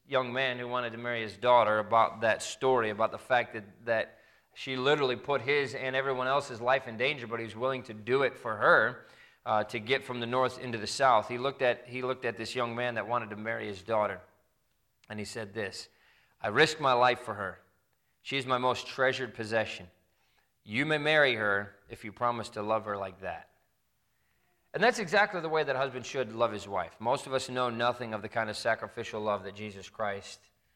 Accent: American